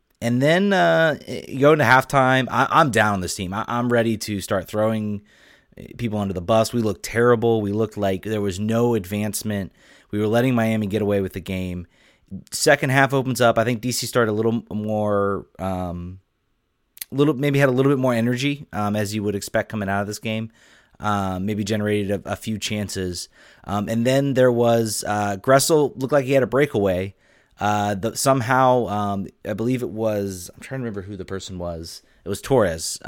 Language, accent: English, American